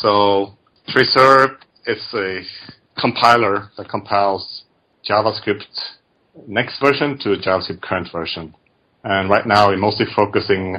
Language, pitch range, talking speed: English, 90-110 Hz, 115 wpm